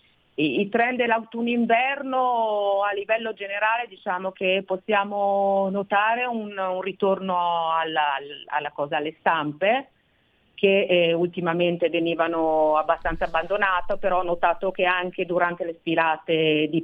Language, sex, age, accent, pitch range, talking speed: Italian, female, 40-59, native, 160-190 Hz, 120 wpm